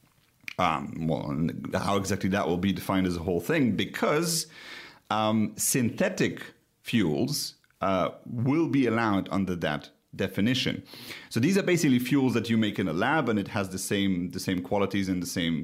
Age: 40-59